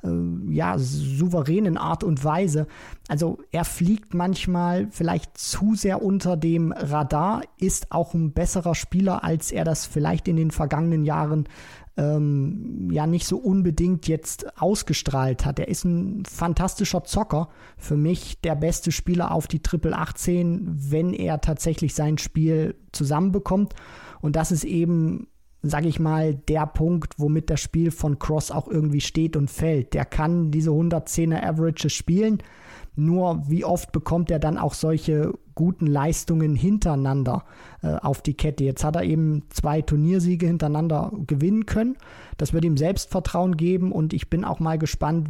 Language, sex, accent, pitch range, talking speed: German, male, German, 150-175 Hz, 155 wpm